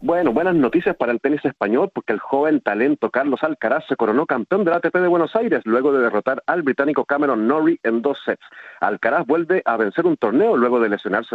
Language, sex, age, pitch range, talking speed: Spanish, male, 40-59, 115-175 Hz, 210 wpm